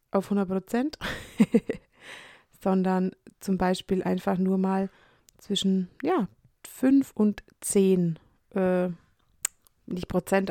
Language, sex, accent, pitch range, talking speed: German, female, German, 185-215 Hz, 95 wpm